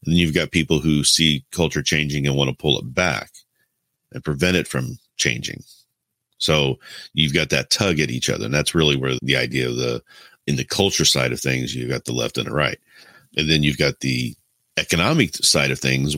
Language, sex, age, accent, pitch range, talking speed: English, male, 40-59, American, 65-80 Hz, 215 wpm